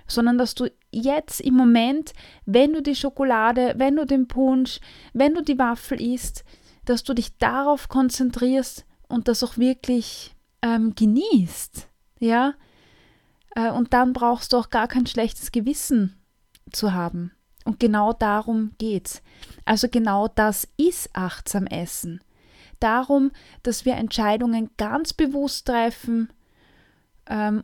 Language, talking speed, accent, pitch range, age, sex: German, 130 wpm, German, 225-265 Hz, 20-39, female